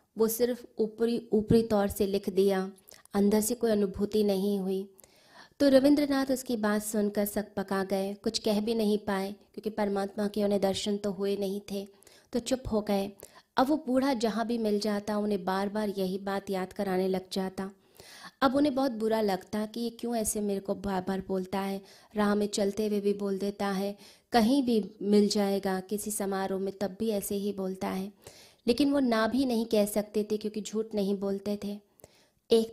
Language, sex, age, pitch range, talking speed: Hindi, female, 20-39, 195-225 Hz, 190 wpm